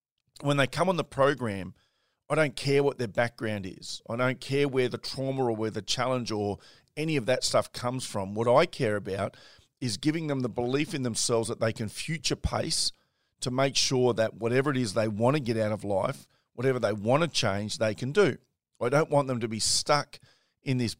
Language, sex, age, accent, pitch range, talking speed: English, male, 40-59, Australian, 110-130 Hz, 220 wpm